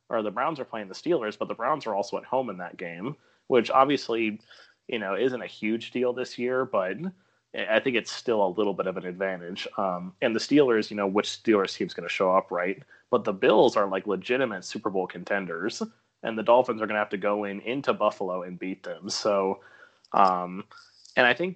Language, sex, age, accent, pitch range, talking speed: English, male, 30-49, American, 100-120 Hz, 230 wpm